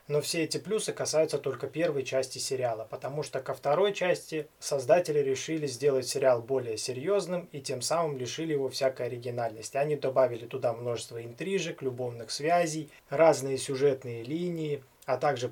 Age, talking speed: 20-39, 150 wpm